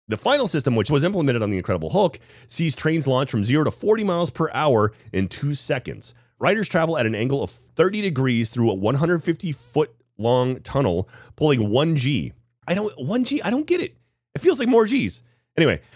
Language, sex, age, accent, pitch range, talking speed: English, male, 30-49, American, 110-155 Hz, 205 wpm